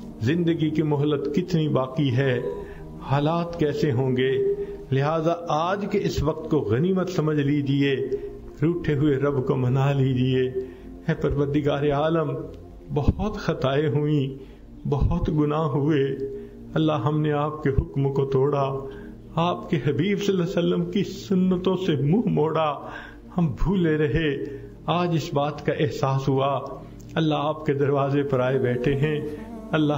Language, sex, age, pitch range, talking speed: Urdu, male, 50-69, 115-155 Hz, 120 wpm